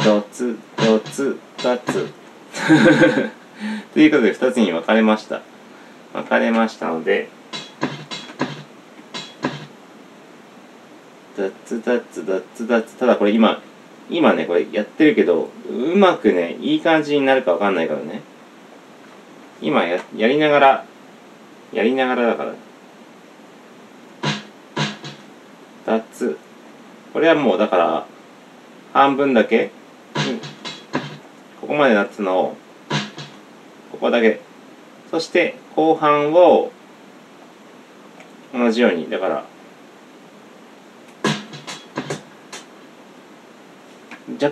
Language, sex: Japanese, male